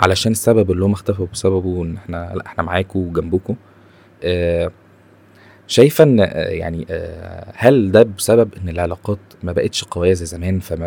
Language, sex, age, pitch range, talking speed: Arabic, male, 20-39, 95-120 Hz, 160 wpm